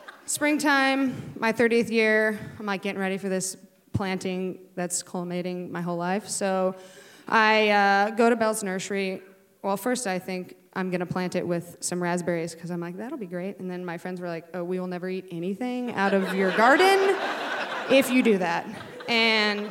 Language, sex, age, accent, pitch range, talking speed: English, female, 20-39, American, 180-230 Hz, 185 wpm